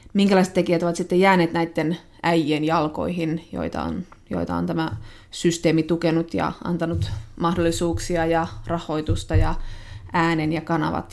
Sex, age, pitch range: female, 20-39, 155-175 Hz